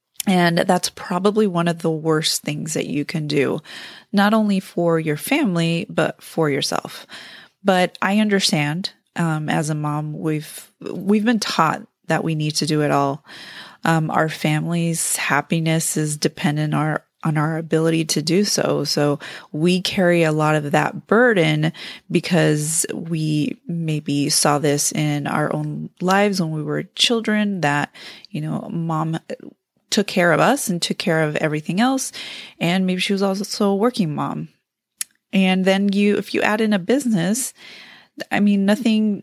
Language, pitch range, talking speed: English, 155-195 Hz, 165 wpm